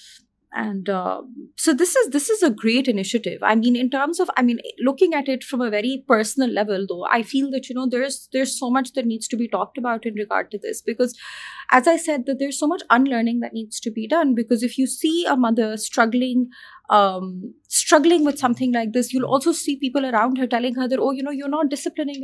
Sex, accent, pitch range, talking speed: female, Indian, 220-280 Hz, 235 wpm